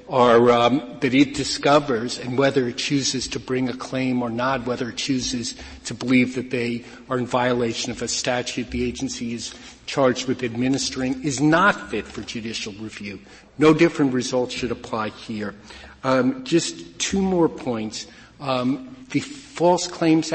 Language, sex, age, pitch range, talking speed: English, male, 50-69, 125-145 Hz, 160 wpm